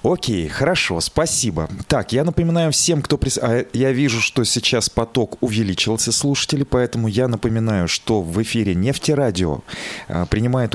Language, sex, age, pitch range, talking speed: Russian, male, 30-49, 95-125 Hz, 130 wpm